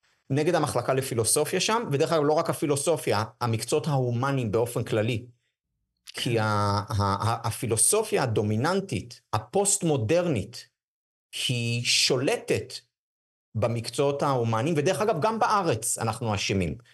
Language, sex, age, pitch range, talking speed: Hebrew, male, 50-69, 120-180 Hz, 105 wpm